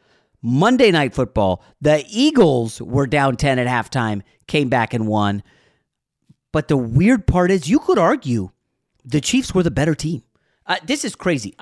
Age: 40-59